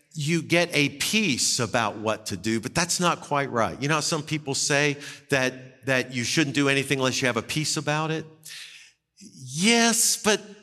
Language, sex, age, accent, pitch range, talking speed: English, male, 50-69, American, 120-170 Hz, 190 wpm